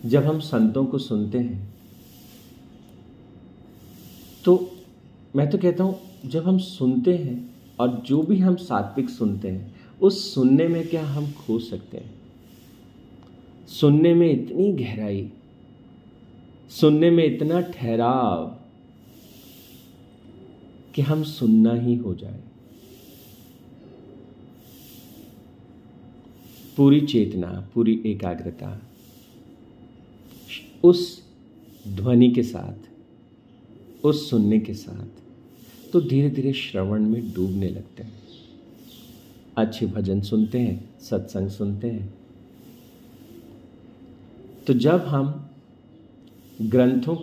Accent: native